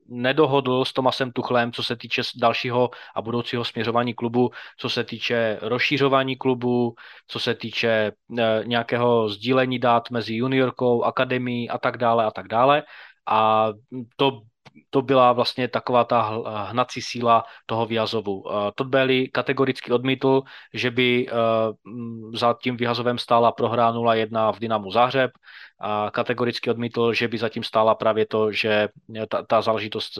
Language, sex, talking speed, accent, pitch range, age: Czech, male, 155 wpm, native, 110-125 Hz, 20-39